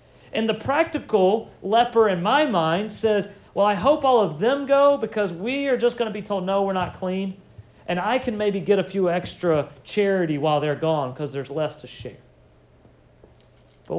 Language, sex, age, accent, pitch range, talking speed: English, male, 40-59, American, 125-210 Hz, 195 wpm